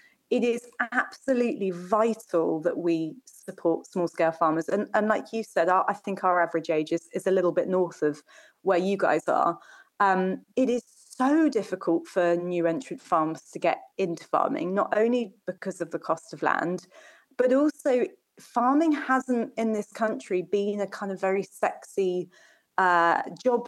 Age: 30-49